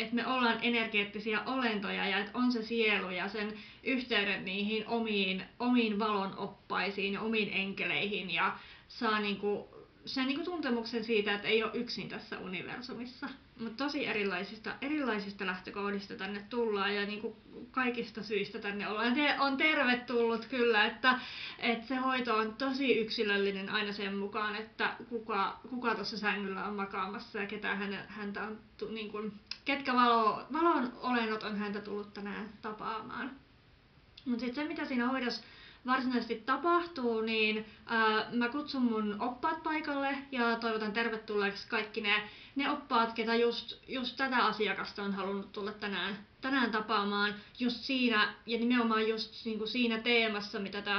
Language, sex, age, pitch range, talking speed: Finnish, female, 30-49, 205-240 Hz, 140 wpm